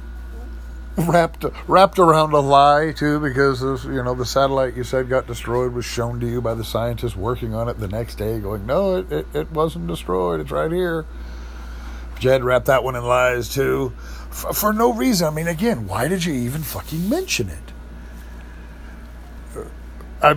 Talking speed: 175 wpm